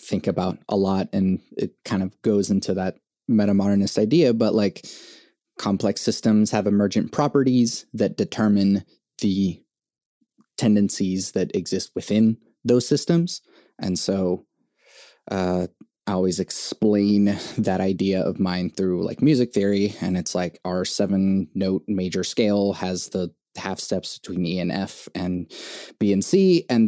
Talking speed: 145 wpm